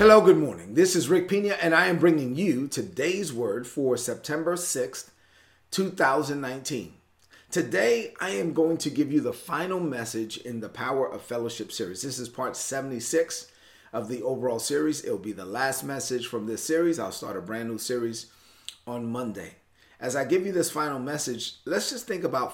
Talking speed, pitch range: 185 wpm, 120-155 Hz